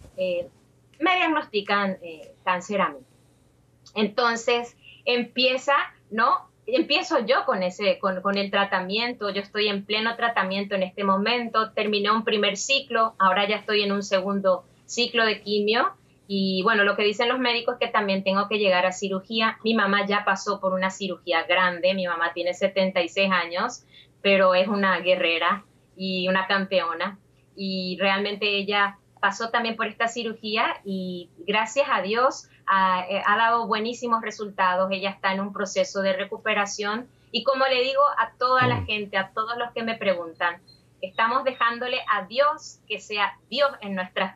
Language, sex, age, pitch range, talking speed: Spanish, female, 20-39, 195-235 Hz, 165 wpm